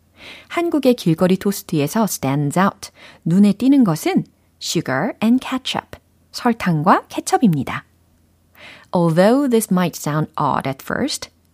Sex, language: female, Korean